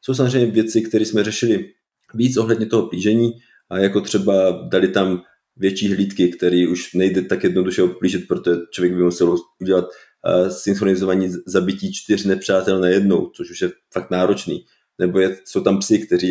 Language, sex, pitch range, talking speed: Czech, male, 95-115 Hz, 160 wpm